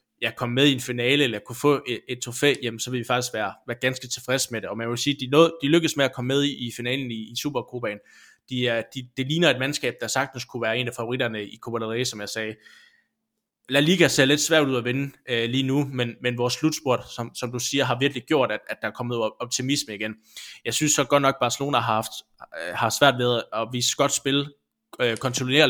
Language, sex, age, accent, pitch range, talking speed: Danish, male, 20-39, native, 115-135 Hz, 250 wpm